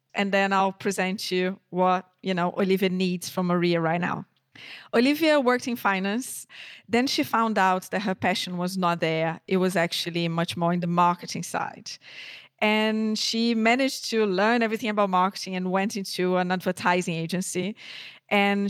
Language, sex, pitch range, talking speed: English, female, 180-210 Hz, 165 wpm